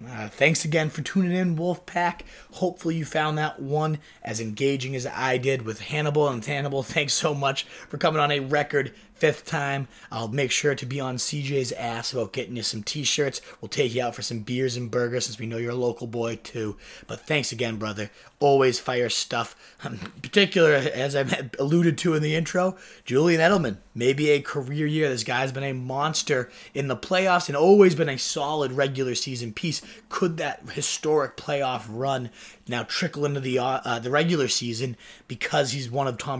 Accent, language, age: American, English, 30-49